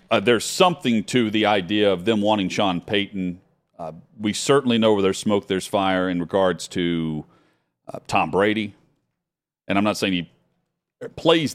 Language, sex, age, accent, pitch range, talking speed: English, male, 40-59, American, 95-120 Hz, 165 wpm